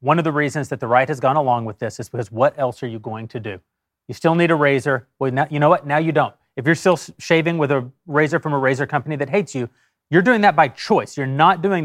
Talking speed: 280 wpm